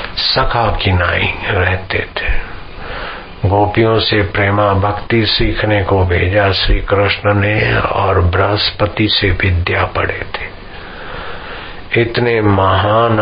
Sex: male